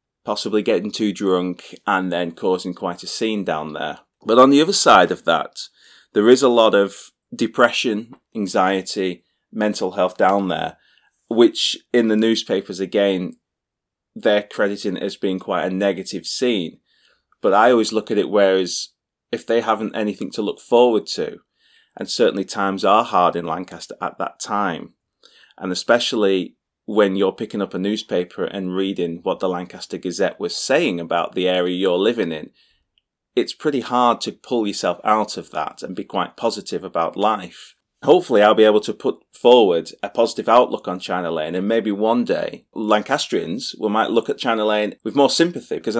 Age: 30-49